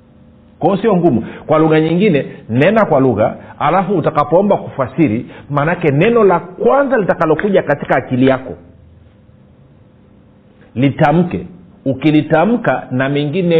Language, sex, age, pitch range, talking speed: Swahili, male, 40-59, 115-170 Hz, 100 wpm